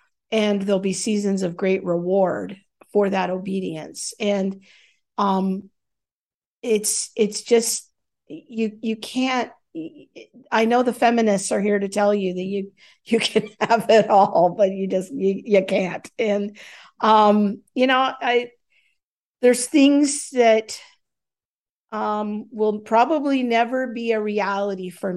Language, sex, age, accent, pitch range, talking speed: English, female, 50-69, American, 195-230 Hz, 135 wpm